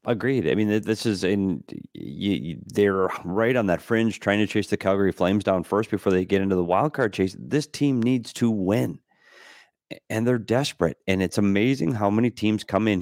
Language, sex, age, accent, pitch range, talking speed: English, male, 30-49, American, 95-135 Hz, 195 wpm